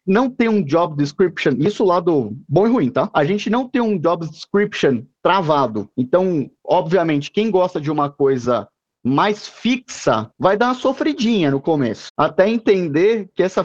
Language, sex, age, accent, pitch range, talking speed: Portuguese, male, 20-39, Brazilian, 160-220 Hz, 170 wpm